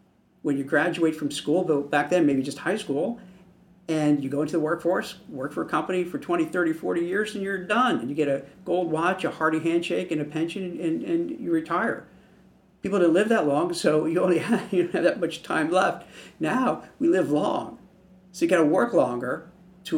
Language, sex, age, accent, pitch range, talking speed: English, male, 50-69, American, 160-190 Hz, 220 wpm